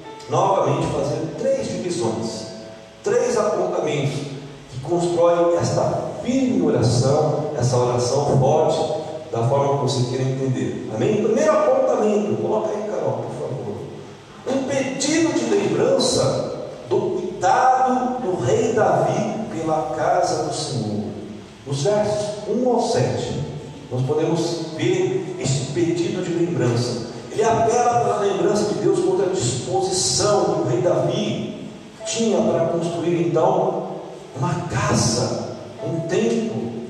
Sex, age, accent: male, 40-59, Brazilian